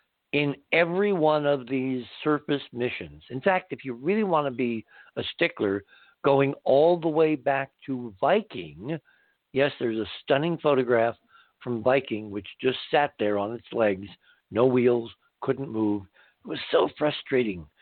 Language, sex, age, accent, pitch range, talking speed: English, male, 60-79, American, 110-145 Hz, 155 wpm